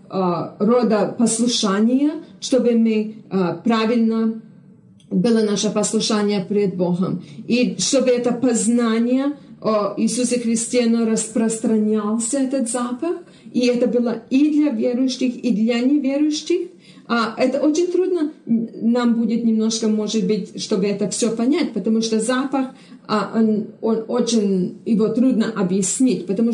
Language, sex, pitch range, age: Russian, female, 210-245 Hz, 40-59